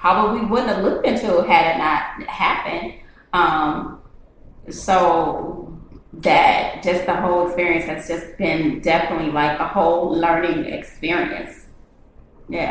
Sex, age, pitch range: female, 20-39, 180-280 Hz